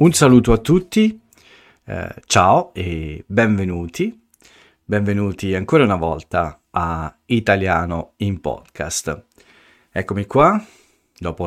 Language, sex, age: Italian, male, 50-69